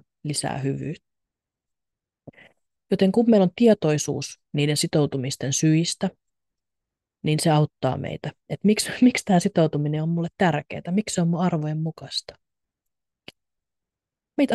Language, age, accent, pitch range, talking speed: Finnish, 30-49, native, 145-175 Hz, 120 wpm